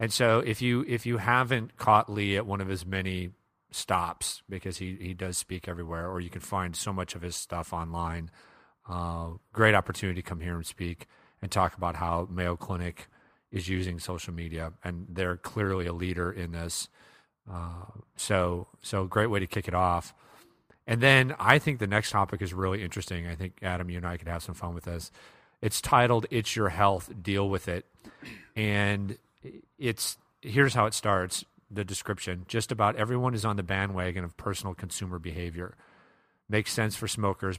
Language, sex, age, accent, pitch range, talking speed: English, male, 40-59, American, 90-105 Hz, 190 wpm